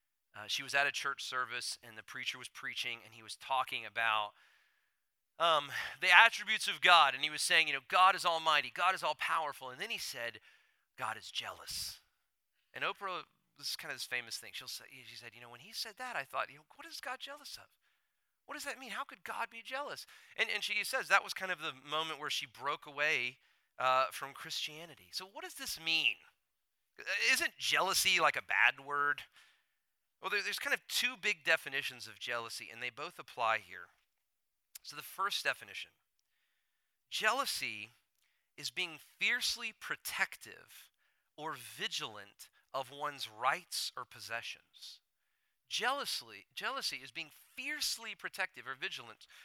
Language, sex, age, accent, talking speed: English, male, 40-59, American, 175 wpm